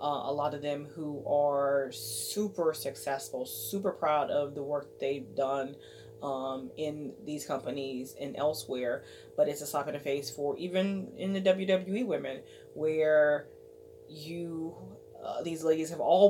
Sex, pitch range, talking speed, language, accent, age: female, 140-165 Hz, 155 wpm, English, American, 20-39